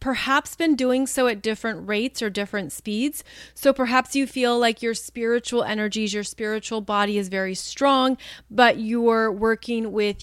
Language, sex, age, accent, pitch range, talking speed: English, female, 30-49, American, 210-250 Hz, 165 wpm